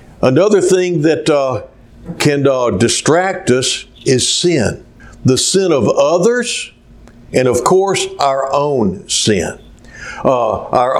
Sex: male